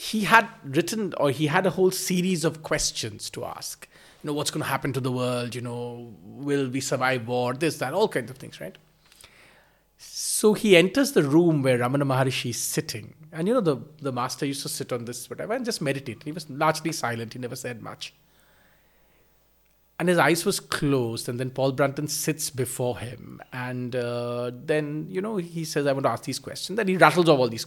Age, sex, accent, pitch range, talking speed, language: 30-49, male, Indian, 125-165 Hz, 215 wpm, English